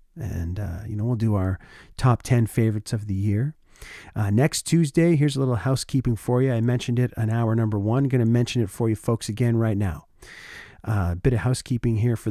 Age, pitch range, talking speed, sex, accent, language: 40-59, 105-135 Hz, 220 wpm, male, American, English